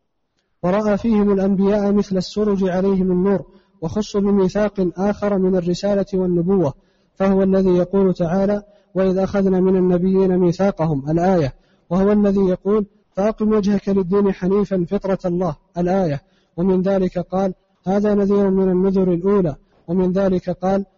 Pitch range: 185-200 Hz